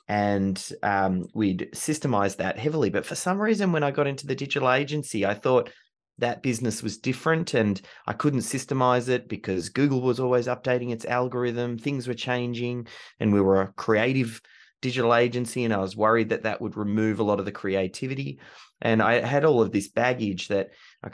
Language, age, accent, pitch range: English, 20-39, Australian, 100-125 Hz